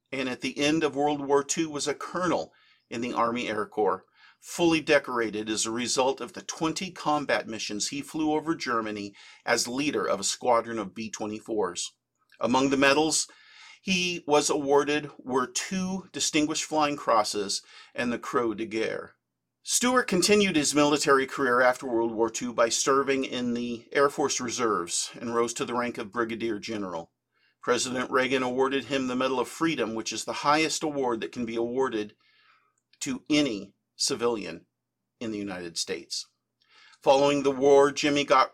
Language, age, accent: English, 50-69, American